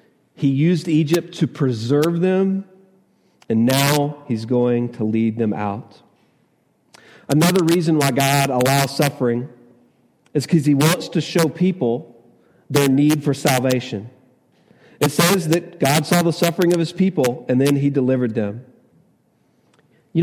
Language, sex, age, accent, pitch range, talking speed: English, male, 40-59, American, 125-175 Hz, 140 wpm